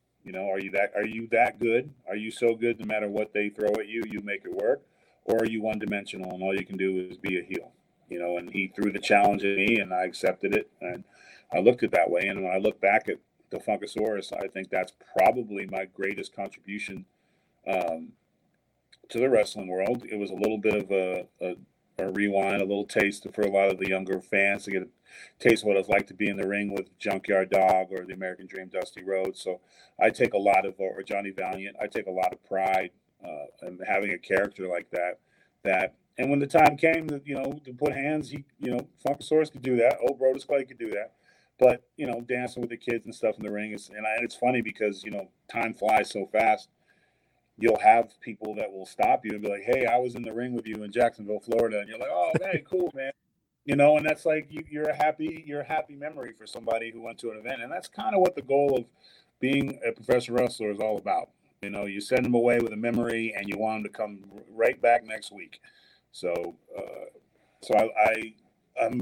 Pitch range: 100-130 Hz